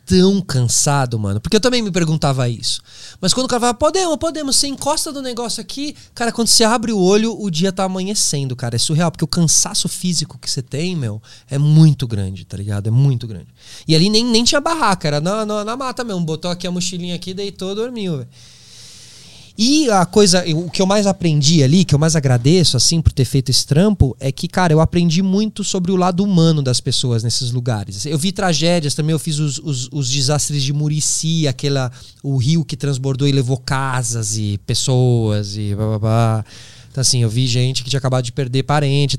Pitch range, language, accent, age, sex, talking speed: 130-185 Hz, Portuguese, Brazilian, 20-39, male, 215 wpm